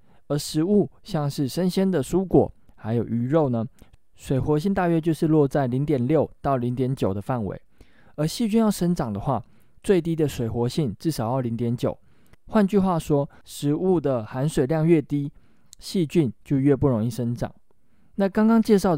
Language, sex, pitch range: Chinese, male, 115-160 Hz